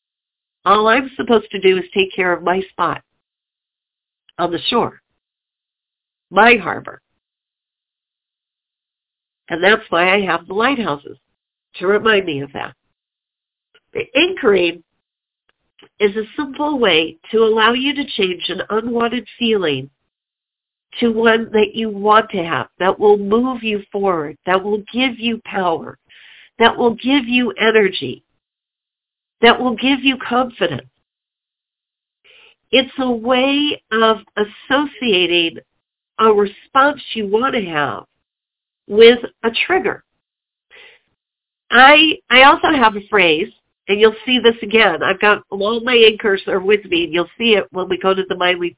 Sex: female